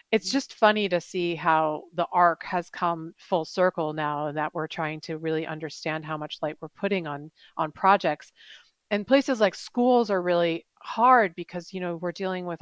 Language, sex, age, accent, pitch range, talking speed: English, female, 40-59, American, 160-215 Hz, 190 wpm